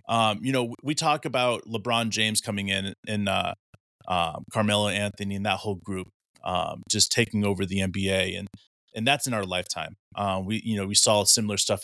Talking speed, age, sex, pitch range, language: 200 wpm, 30-49, male, 95-120 Hz, English